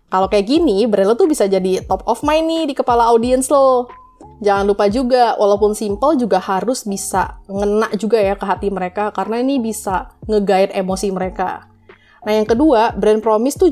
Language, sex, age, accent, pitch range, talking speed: Indonesian, female, 20-39, native, 195-240 Hz, 185 wpm